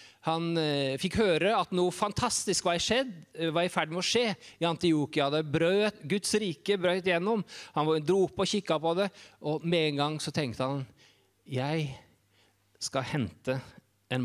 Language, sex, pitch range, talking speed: English, male, 135-185 Hz, 175 wpm